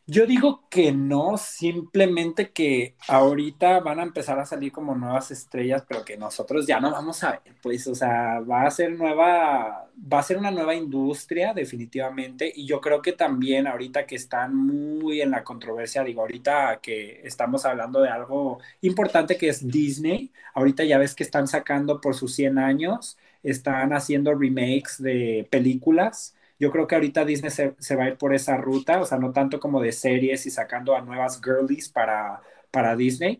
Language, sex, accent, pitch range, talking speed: Spanish, male, Mexican, 130-160 Hz, 185 wpm